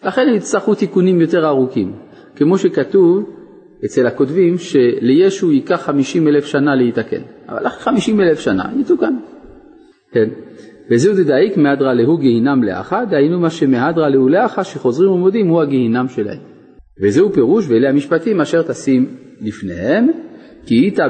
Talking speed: 135 wpm